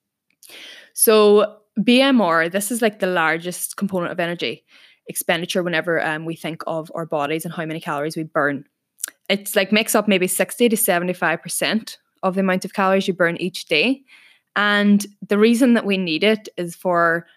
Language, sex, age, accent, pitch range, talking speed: English, female, 20-39, Irish, 165-205 Hz, 175 wpm